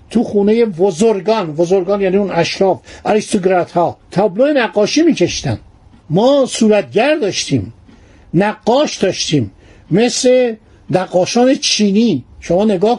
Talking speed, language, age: 90 wpm, Persian, 50-69